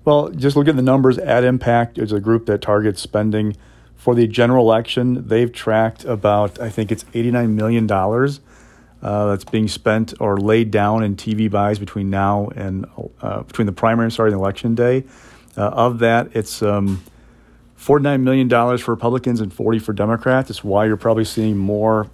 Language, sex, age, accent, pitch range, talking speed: English, male, 40-59, American, 105-120 Hz, 180 wpm